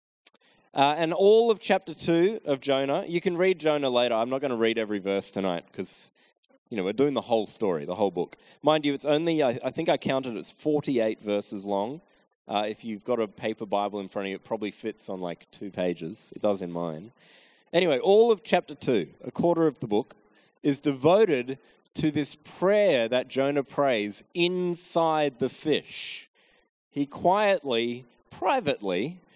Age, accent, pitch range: 20-39, Australian, 115-155 Hz